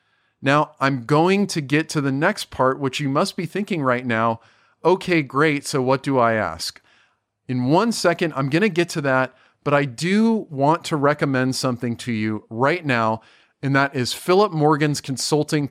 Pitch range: 130-155 Hz